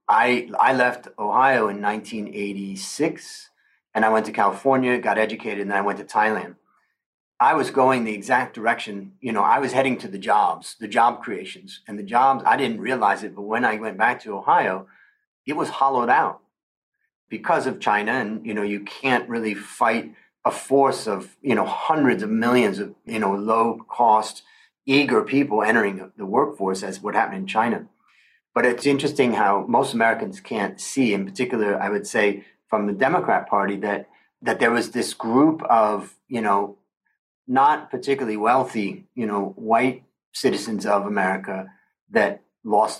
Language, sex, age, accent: English, male, 40-59, American